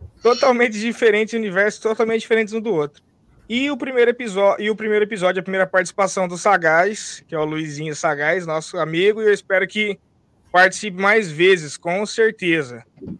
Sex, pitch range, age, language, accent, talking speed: male, 165-220 Hz, 20-39, Portuguese, Brazilian, 175 wpm